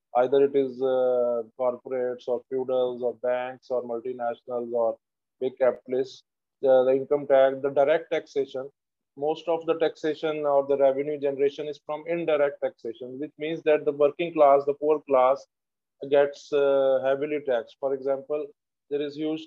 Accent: Indian